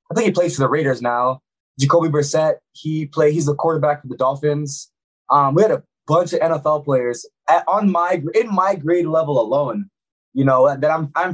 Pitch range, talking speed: 140-185 Hz, 205 wpm